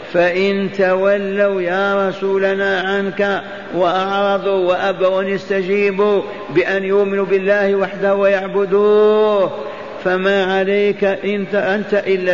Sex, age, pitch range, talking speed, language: male, 50-69, 170-195 Hz, 85 wpm, Arabic